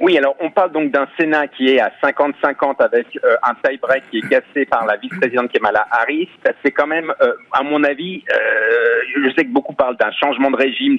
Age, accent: 40-59, French